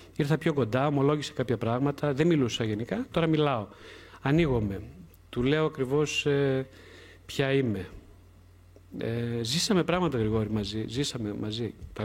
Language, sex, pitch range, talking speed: Greek, male, 105-150 Hz, 130 wpm